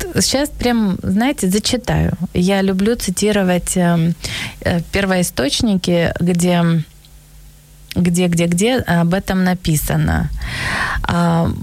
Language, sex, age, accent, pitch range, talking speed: Ukrainian, female, 20-39, native, 170-200 Hz, 85 wpm